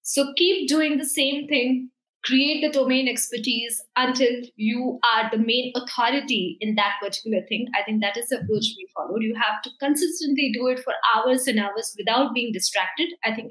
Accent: Indian